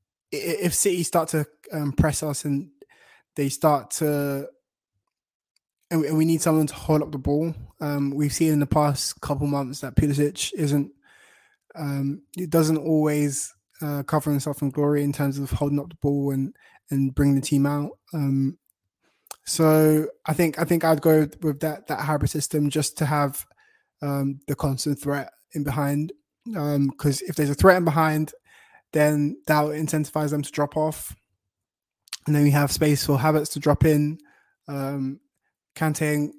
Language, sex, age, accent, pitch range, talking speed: English, male, 20-39, British, 140-160 Hz, 170 wpm